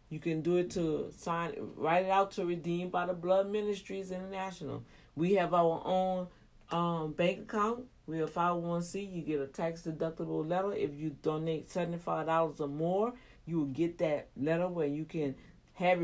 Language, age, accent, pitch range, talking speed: English, 40-59, American, 165-220 Hz, 175 wpm